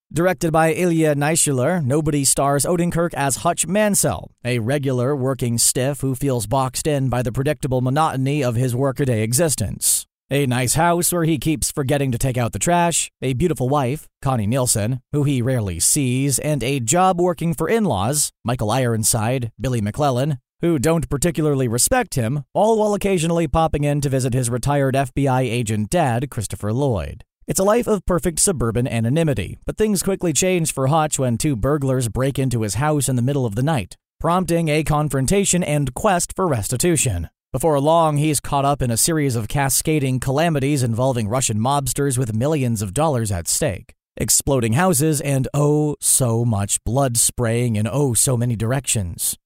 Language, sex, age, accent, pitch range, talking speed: English, male, 40-59, American, 125-160 Hz, 170 wpm